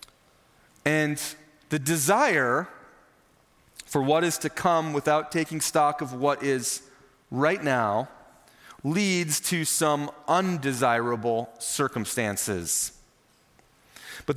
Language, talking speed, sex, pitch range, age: English, 90 wpm, male, 130-165 Hz, 30-49